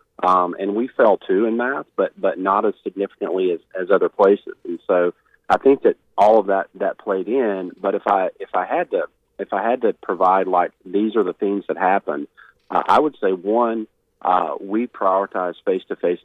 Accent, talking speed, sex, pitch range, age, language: American, 210 wpm, male, 95-135 Hz, 40-59, English